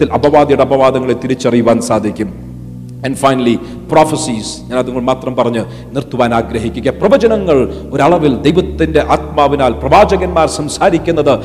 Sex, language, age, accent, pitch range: male, Malayalam, 50-69, native, 130-165 Hz